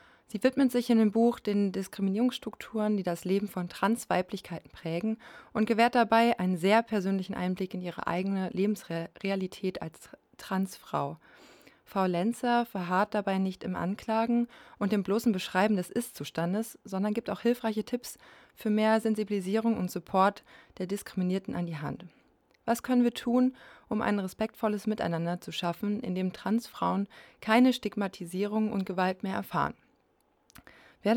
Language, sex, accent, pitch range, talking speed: German, female, German, 185-225 Hz, 145 wpm